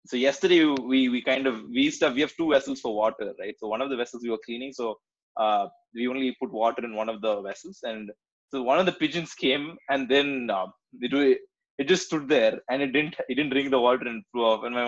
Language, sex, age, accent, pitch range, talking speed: Tamil, male, 20-39, native, 130-205 Hz, 240 wpm